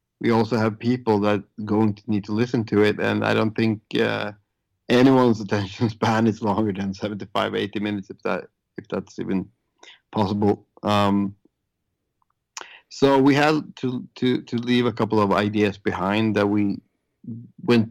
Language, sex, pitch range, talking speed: English, male, 105-125 Hz, 160 wpm